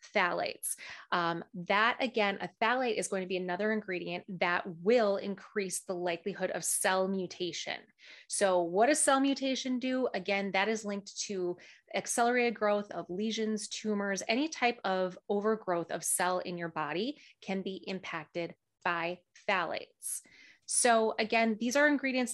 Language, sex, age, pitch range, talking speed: English, female, 20-39, 190-235 Hz, 150 wpm